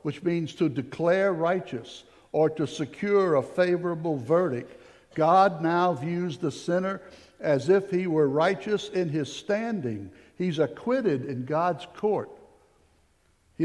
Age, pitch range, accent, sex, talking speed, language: 60-79, 130-180 Hz, American, male, 130 wpm, English